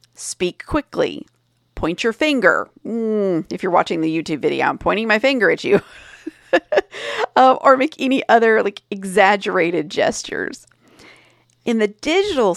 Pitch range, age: 165-235 Hz, 40-59